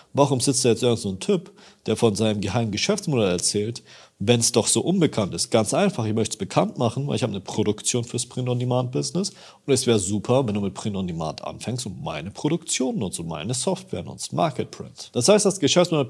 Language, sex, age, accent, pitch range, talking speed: German, male, 40-59, German, 100-135 Hz, 215 wpm